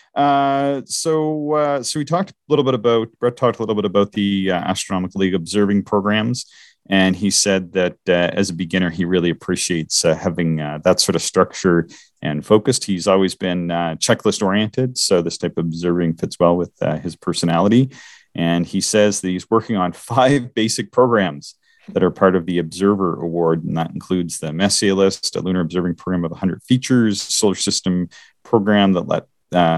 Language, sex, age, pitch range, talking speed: English, male, 40-59, 80-105 Hz, 190 wpm